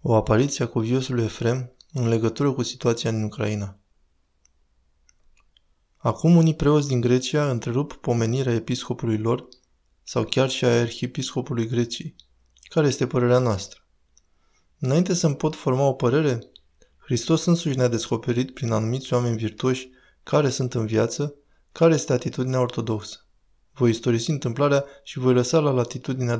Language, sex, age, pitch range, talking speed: Romanian, male, 20-39, 110-135 Hz, 135 wpm